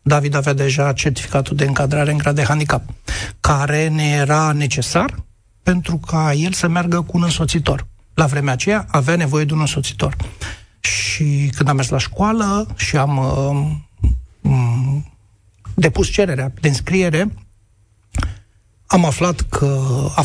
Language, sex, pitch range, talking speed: Romanian, male, 120-155 Hz, 140 wpm